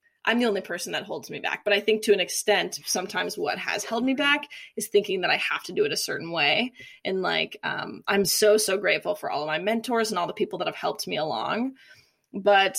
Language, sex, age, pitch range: English, female, 20-39, 195-245 Hz